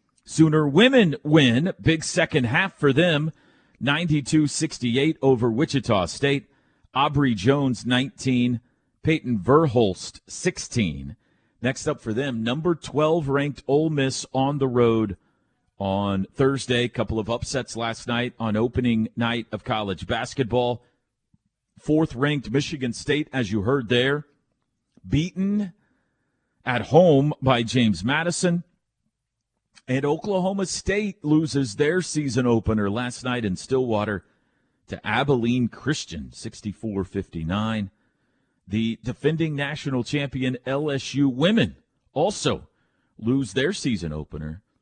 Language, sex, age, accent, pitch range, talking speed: English, male, 40-59, American, 115-150 Hz, 110 wpm